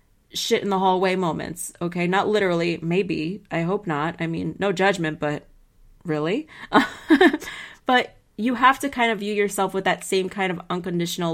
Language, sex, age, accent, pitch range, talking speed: English, female, 30-49, American, 175-200 Hz, 155 wpm